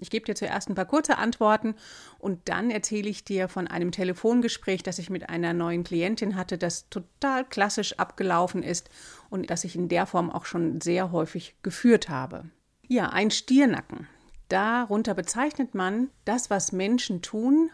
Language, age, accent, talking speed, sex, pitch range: German, 30-49, German, 170 wpm, female, 180-245 Hz